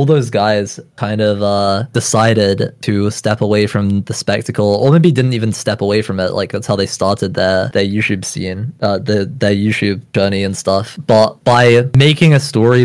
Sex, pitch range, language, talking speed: male, 100-115 Hz, English, 195 wpm